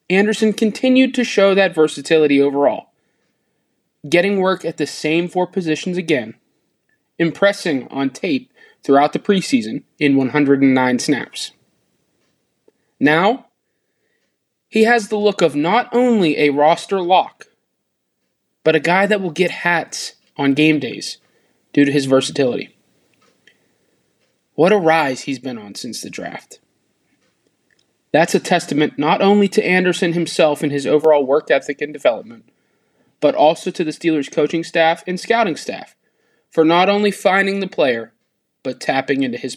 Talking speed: 140 wpm